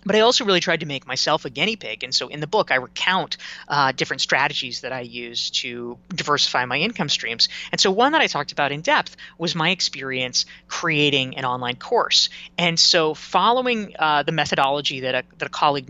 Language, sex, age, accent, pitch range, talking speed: English, female, 20-39, American, 135-175 Hz, 210 wpm